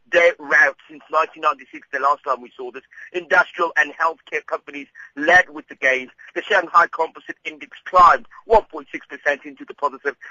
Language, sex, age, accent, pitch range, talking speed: English, male, 30-49, British, 140-185 Hz, 155 wpm